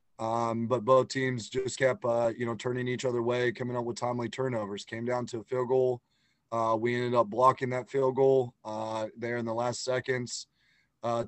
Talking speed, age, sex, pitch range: 205 wpm, 30-49, male, 115-125 Hz